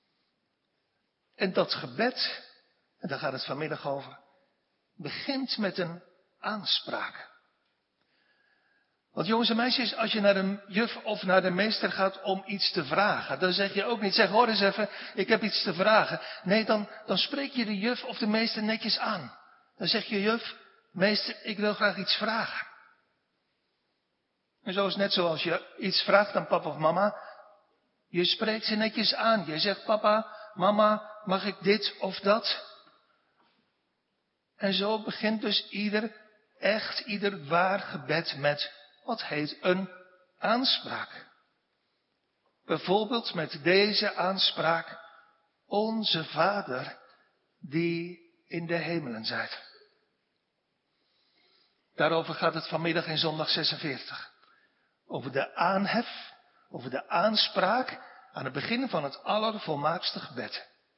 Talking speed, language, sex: 135 wpm, Dutch, male